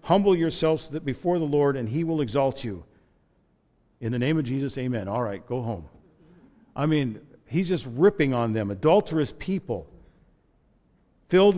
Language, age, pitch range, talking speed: English, 50-69, 125-165 Hz, 155 wpm